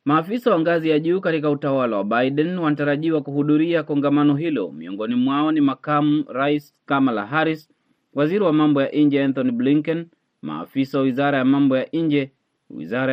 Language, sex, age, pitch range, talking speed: Swahili, male, 30-49, 130-150 Hz, 155 wpm